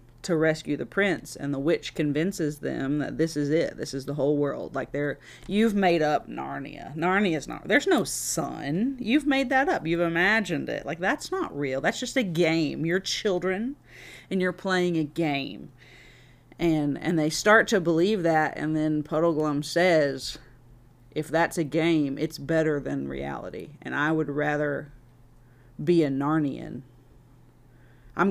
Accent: American